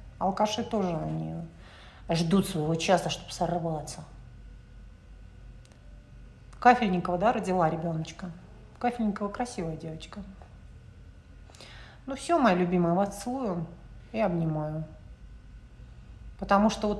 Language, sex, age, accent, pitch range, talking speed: Russian, female, 40-59, native, 165-260 Hz, 90 wpm